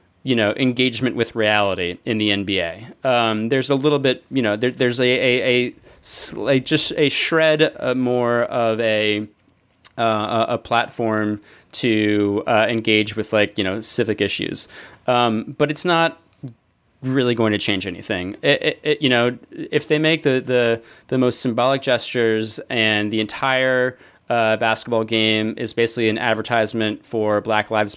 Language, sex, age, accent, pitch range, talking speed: English, male, 30-49, American, 110-125 Hz, 165 wpm